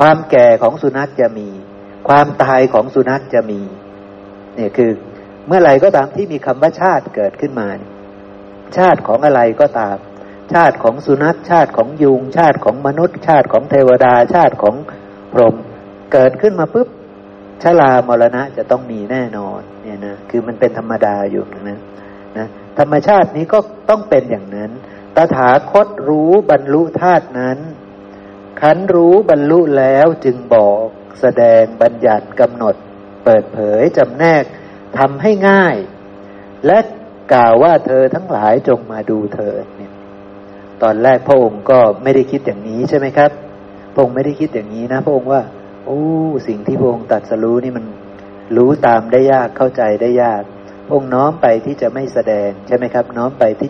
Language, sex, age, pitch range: Thai, male, 60-79, 100-145 Hz